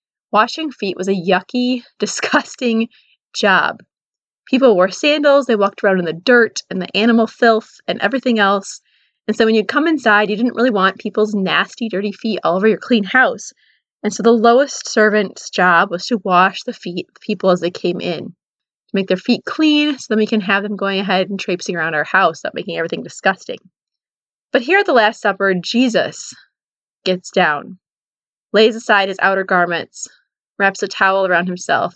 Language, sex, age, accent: English, female, 20-39, American